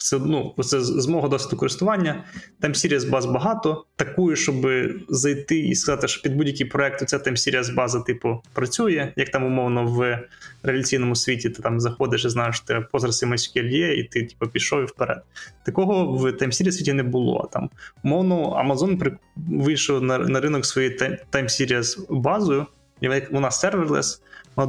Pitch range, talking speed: 125-150 Hz, 170 wpm